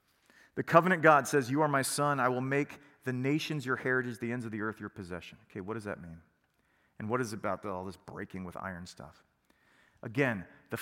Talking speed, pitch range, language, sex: 220 wpm, 130-180 Hz, English, male